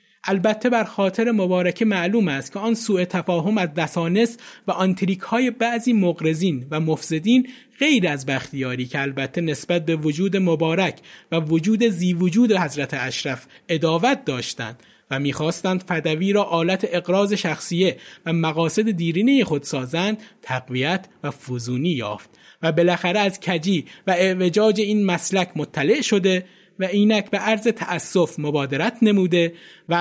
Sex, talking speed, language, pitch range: male, 140 wpm, Persian, 160-215 Hz